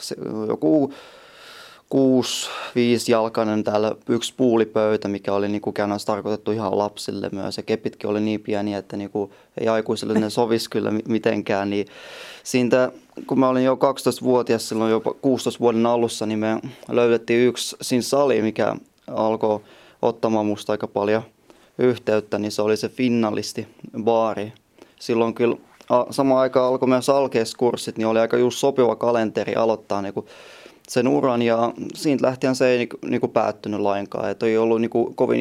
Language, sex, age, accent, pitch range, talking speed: Finnish, male, 20-39, native, 105-125 Hz, 155 wpm